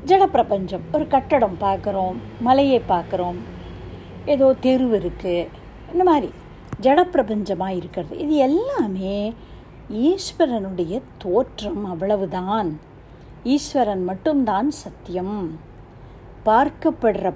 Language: Tamil